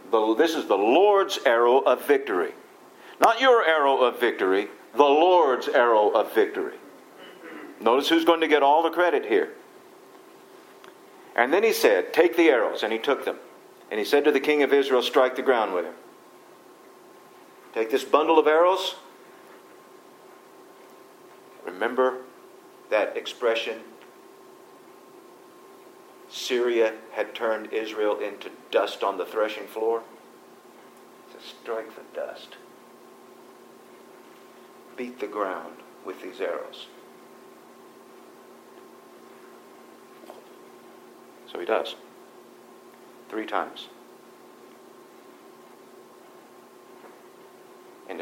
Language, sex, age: English, male, 50-69